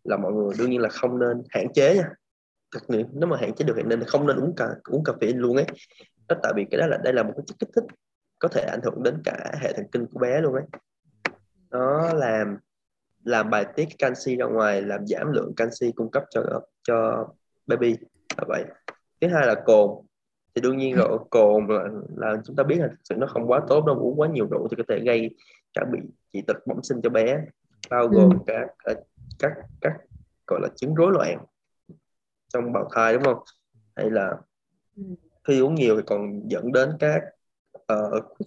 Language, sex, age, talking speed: Vietnamese, male, 20-39, 215 wpm